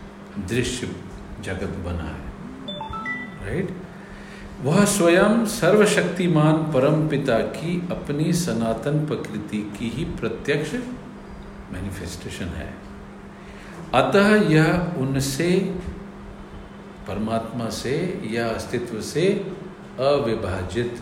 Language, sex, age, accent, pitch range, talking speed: Hindi, male, 50-69, native, 115-185 Hz, 80 wpm